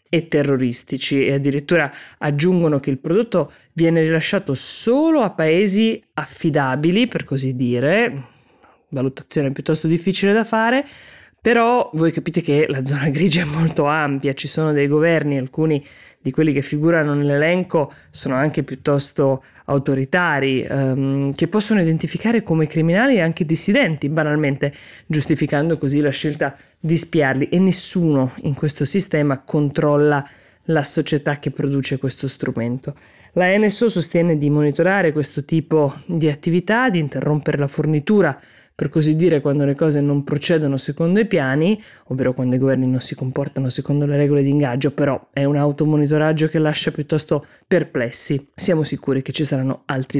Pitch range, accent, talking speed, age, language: 140-165 Hz, native, 145 wpm, 20-39, Italian